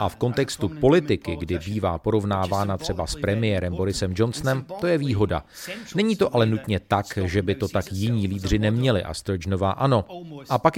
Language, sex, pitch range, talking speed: Czech, male, 100-120 Hz, 180 wpm